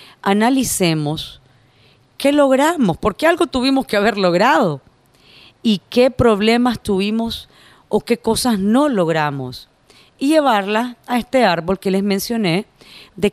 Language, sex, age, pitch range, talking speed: Spanish, female, 40-59, 175-225 Hz, 125 wpm